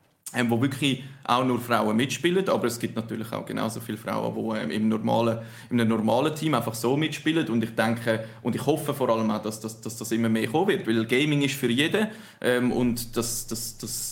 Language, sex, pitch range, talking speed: German, male, 115-140 Hz, 205 wpm